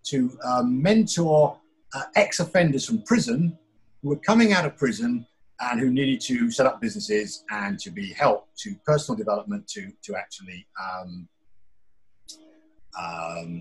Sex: male